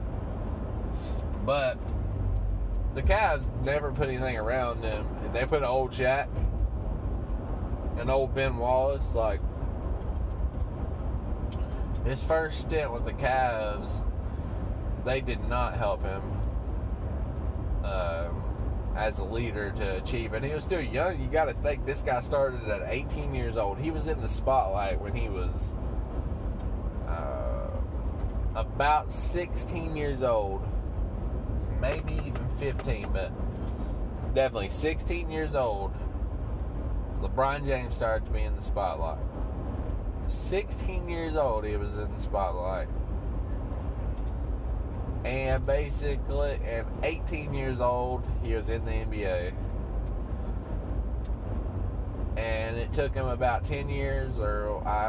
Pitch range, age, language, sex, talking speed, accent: 85-110 Hz, 20-39, English, male, 115 wpm, American